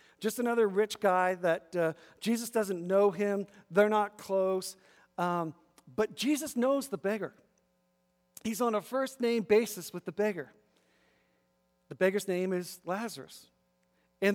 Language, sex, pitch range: English, male, 175-220 Hz